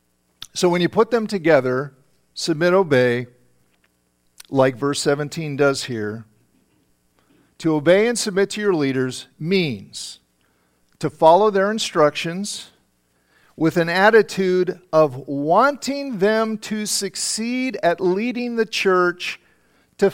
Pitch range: 125-195 Hz